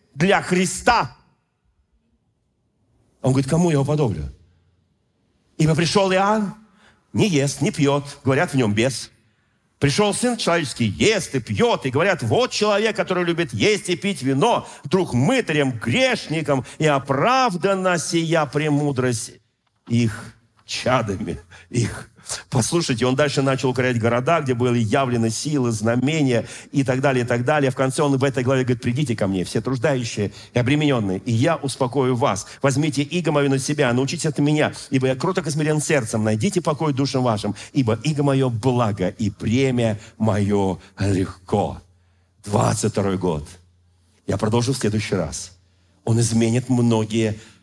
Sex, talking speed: male, 145 wpm